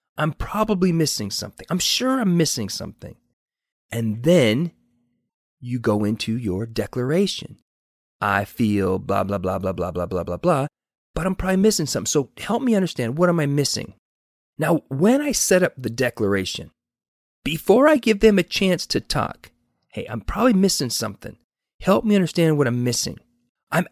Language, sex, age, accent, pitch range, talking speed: English, male, 30-49, American, 120-190 Hz, 170 wpm